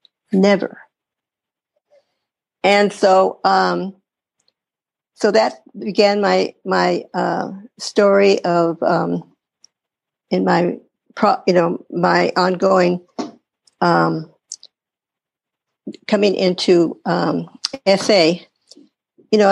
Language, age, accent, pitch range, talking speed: English, 60-79, American, 175-205 Hz, 85 wpm